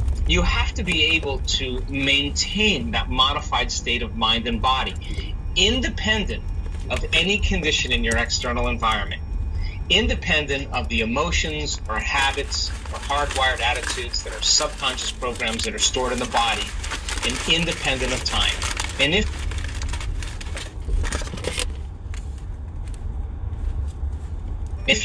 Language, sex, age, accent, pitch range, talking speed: English, male, 30-49, American, 75-95 Hz, 115 wpm